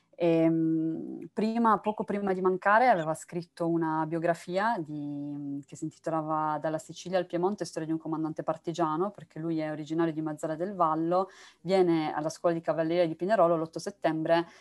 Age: 20-39